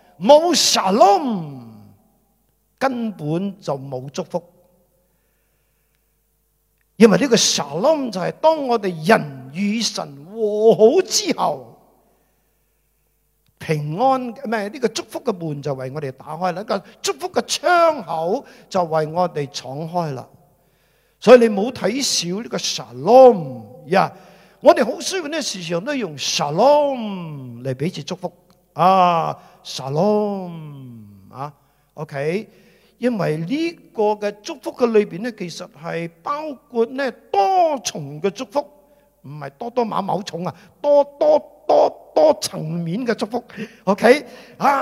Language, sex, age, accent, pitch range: Chinese, male, 50-69, native, 165-260 Hz